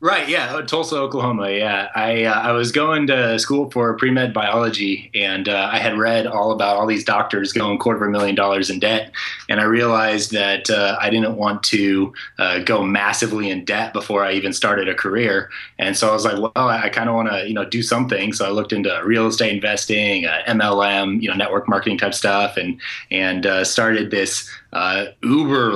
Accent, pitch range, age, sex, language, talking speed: American, 100-120 Hz, 20-39, male, English, 210 wpm